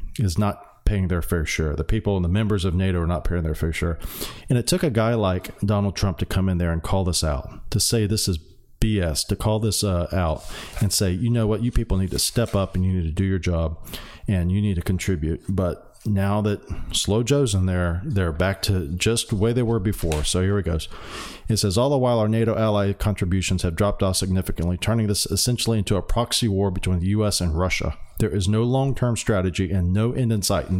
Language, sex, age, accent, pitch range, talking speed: English, male, 40-59, American, 90-110 Hz, 245 wpm